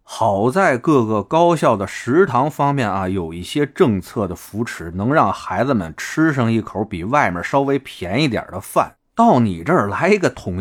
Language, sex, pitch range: Chinese, male, 90-140 Hz